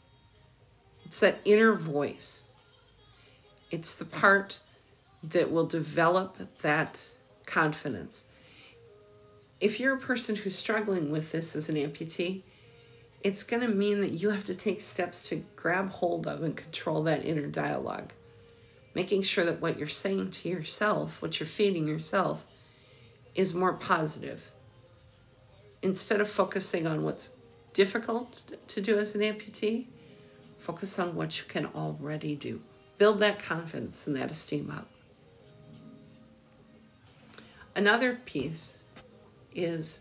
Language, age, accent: English, 50-69, American